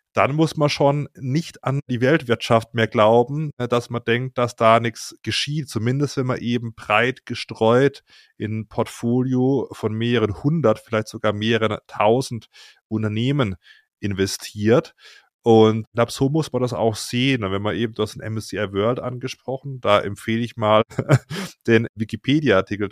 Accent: German